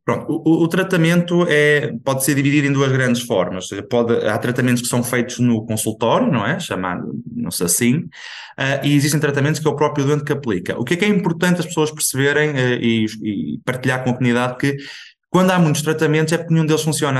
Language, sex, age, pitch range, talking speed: Portuguese, male, 20-39, 120-150 Hz, 205 wpm